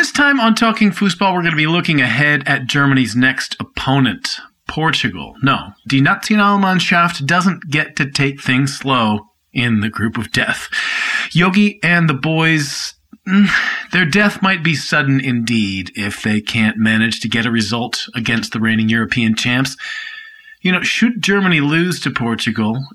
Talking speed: 155 wpm